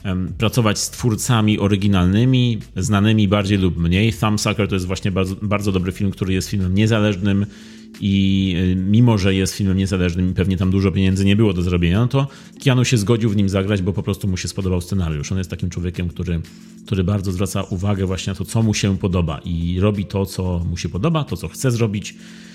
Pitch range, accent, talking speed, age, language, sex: 95-110 Hz, native, 200 wpm, 30-49, Polish, male